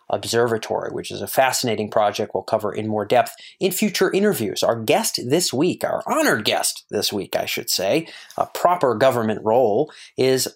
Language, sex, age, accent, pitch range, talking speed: English, male, 30-49, American, 105-150 Hz, 175 wpm